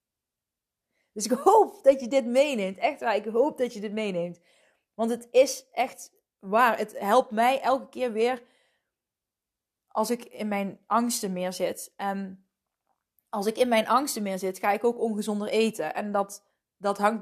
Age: 20-39